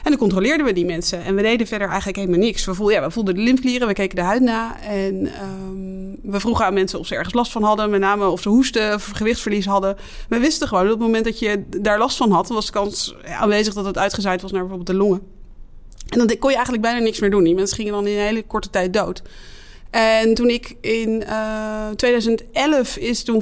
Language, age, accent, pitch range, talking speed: Dutch, 20-39, Dutch, 195-235 Hz, 250 wpm